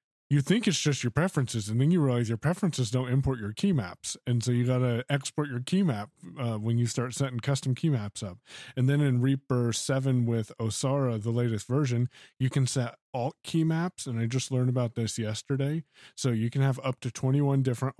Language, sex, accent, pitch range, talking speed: English, male, American, 110-135 Hz, 220 wpm